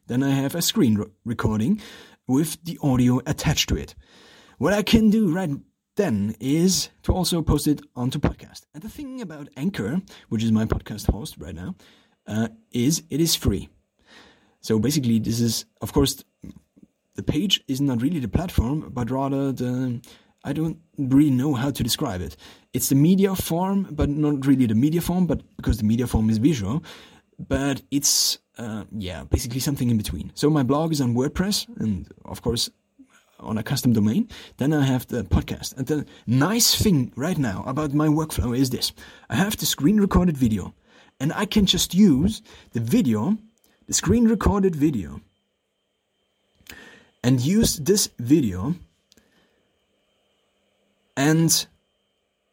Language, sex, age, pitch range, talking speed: English, male, 30-49, 120-170 Hz, 160 wpm